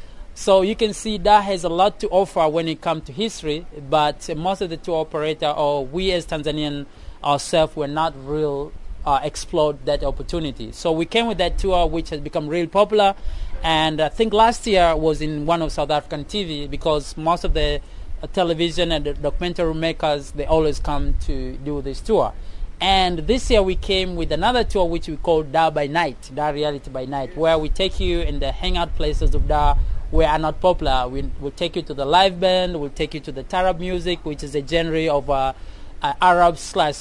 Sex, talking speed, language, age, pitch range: male, 215 wpm, English, 30-49, 145-180 Hz